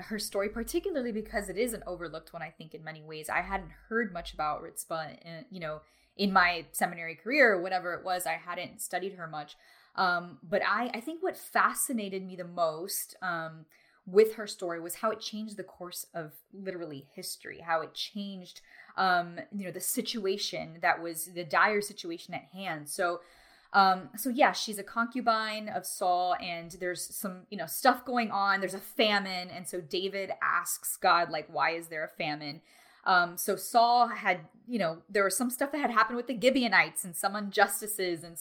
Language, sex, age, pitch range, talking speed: English, female, 10-29, 170-215 Hz, 195 wpm